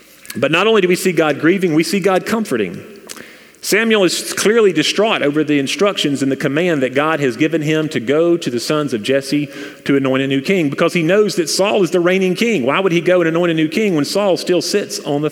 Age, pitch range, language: 40-59, 145-185 Hz, English